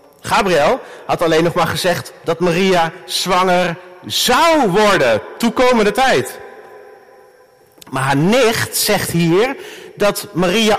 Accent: Dutch